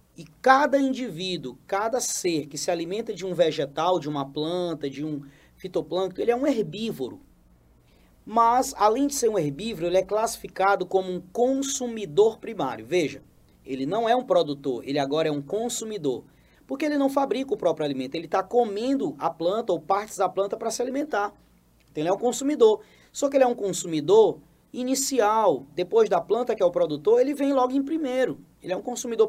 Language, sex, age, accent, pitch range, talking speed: Portuguese, male, 20-39, Brazilian, 150-230 Hz, 190 wpm